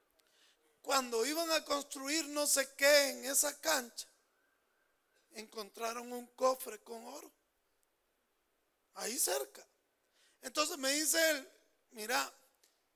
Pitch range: 240-325 Hz